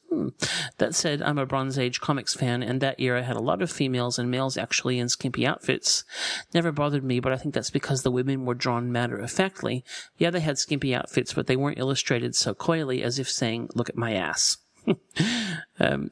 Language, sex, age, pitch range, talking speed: English, male, 40-59, 125-155 Hz, 210 wpm